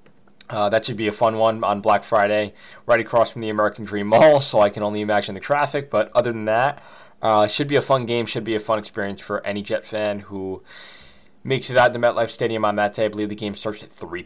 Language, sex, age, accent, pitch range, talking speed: English, male, 20-39, American, 95-115 Hz, 255 wpm